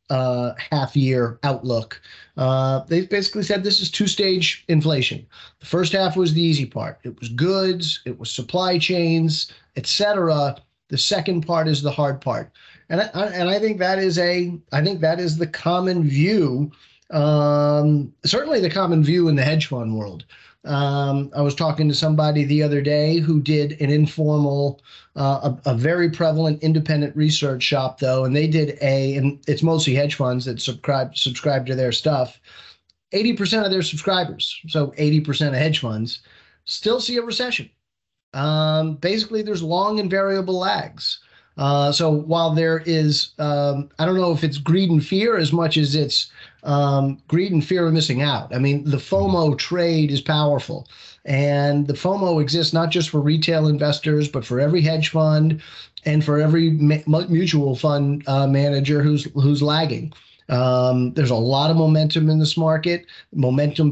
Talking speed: 170 wpm